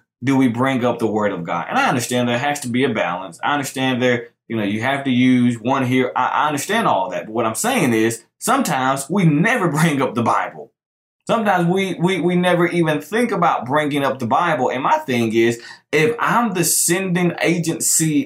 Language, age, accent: English, 20-39, American